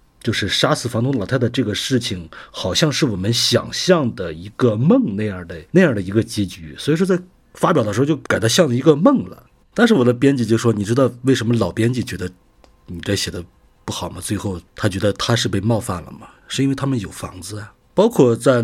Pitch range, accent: 95-135 Hz, native